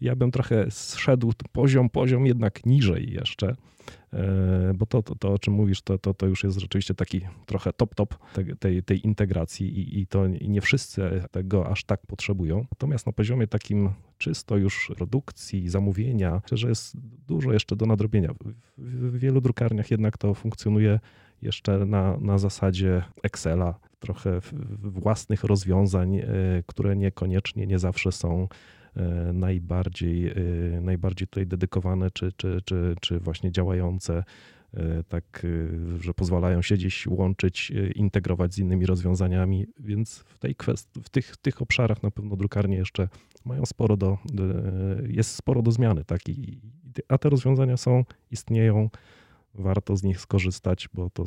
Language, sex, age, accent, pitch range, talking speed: Polish, male, 30-49, native, 95-115 Hz, 145 wpm